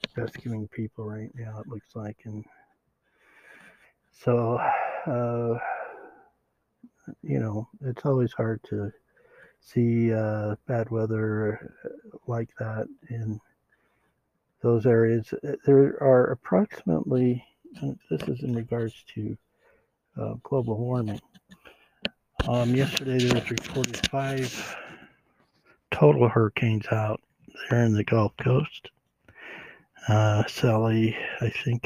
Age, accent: 60-79, American